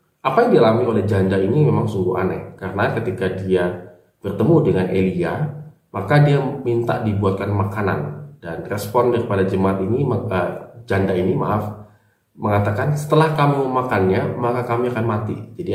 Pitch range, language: 95-120 Hz, Indonesian